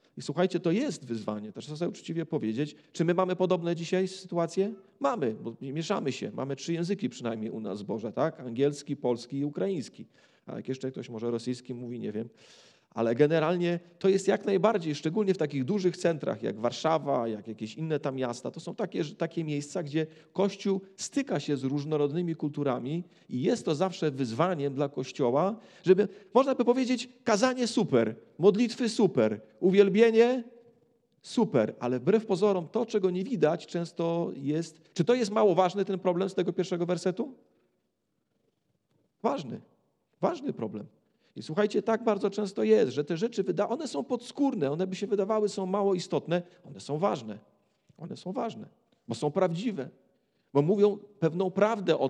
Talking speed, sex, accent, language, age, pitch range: 165 wpm, male, native, Polish, 40-59, 145-205 Hz